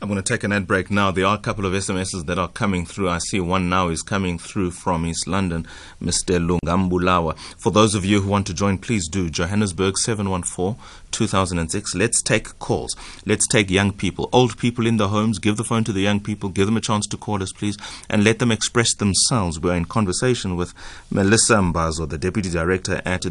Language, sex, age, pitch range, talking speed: English, male, 30-49, 90-105 Hz, 215 wpm